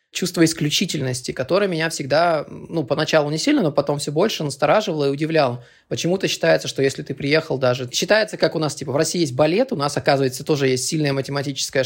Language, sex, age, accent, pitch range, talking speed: Russian, male, 20-39, native, 140-175 Hz, 195 wpm